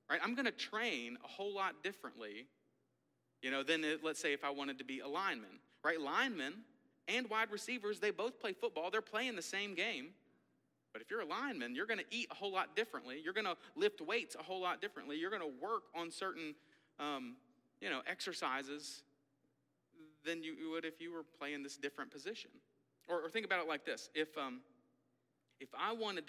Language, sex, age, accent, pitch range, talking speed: English, male, 40-59, American, 140-200 Hz, 205 wpm